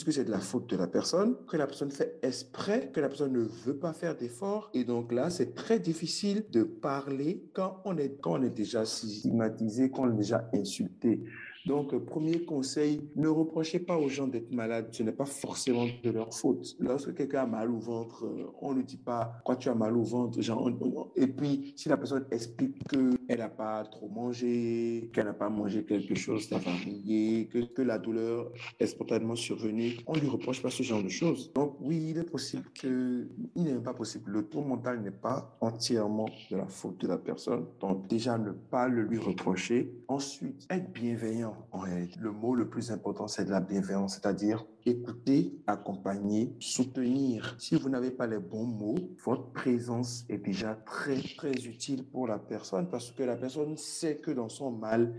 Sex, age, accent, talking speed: male, 50-69, French, 205 wpm